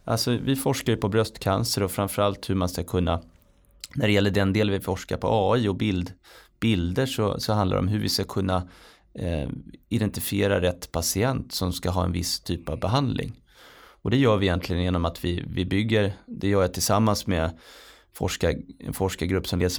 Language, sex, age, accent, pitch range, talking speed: Swedish, male, 30-49, native, 90-115 Hz, 195 wpm